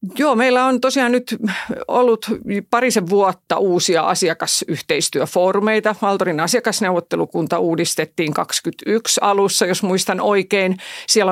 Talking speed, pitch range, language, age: 100 wpm, 170-210 Hz, Finnish, 50-69